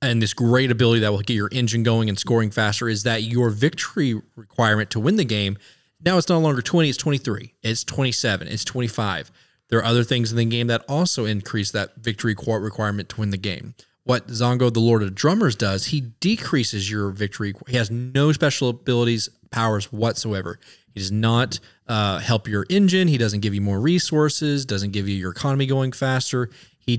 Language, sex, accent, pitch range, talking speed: English, male, American, 105-130 Hz, 200 wpm